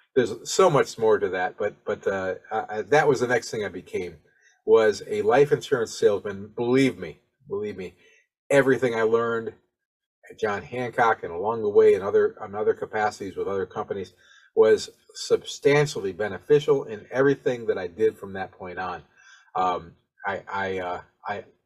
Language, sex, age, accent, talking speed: English, male, 40-59, American, 170 wpm